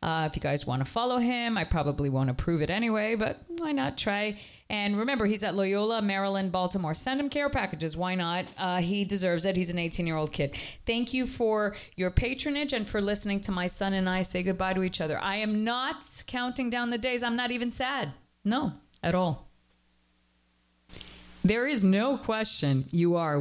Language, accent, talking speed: English, American, 195 wpm